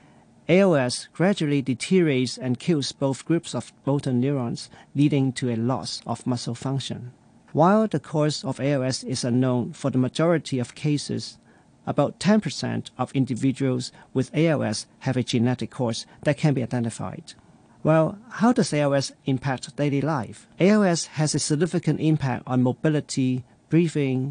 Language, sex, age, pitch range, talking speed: English, male, 40-59, 125-155 Hz, 145 wpm